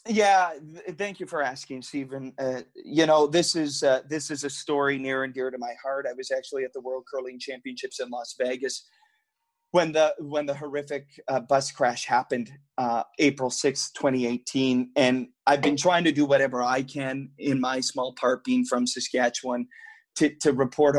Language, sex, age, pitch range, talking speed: English, male, 30-49, 130-155 Hz, 190 wpm